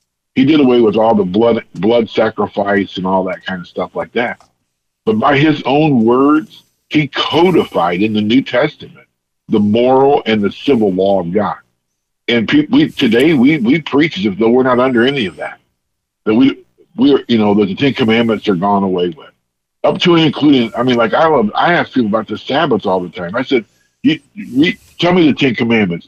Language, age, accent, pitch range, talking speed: English, 50-69, American, 95-140 Hz, 210 wpm